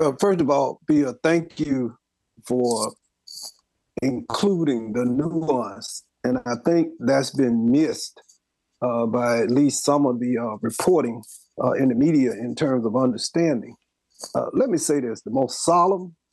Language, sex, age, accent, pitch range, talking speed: English, male, 50-69, American, 125-150 Hz, 150 wpm